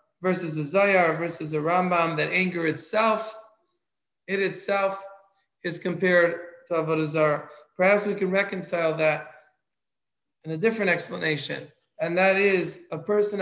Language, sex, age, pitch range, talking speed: English, male, 20-39, 170-200 Hz, 130 wpm